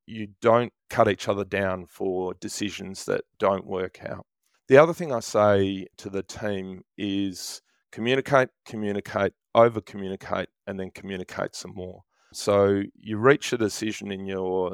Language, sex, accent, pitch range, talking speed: English, male, Australian, 95-110 Hz, 145 wpm